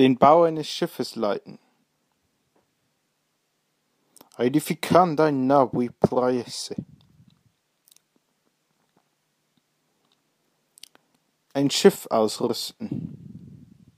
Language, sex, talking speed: English, male, 45 wpm